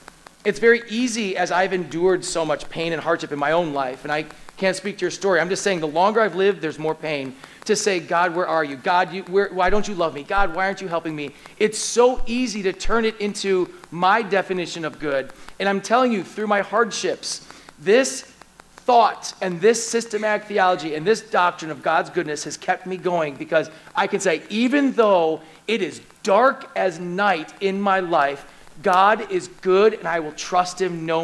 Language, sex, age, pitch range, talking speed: English, male, 40-59, 165-210 Hz, 205 wpm